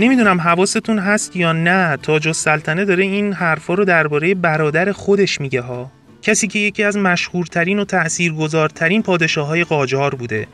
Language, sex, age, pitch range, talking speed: Persian, male, 30-49, 140-185 Hz, 160 wpm